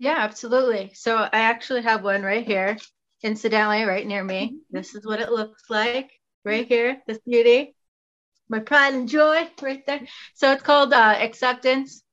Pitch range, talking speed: 190-225 Hz, 170 wpm